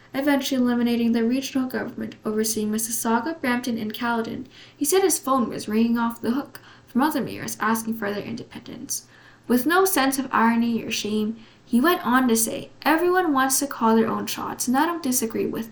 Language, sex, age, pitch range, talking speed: English, female, 10-29, 225-280 Hz, 190 wpm